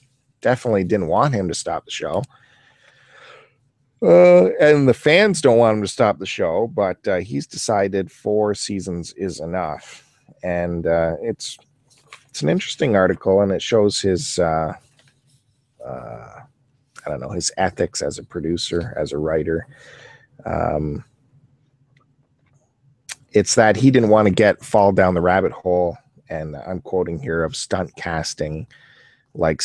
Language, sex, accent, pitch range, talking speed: English, male, American, 95-130 Hz, 145 wpm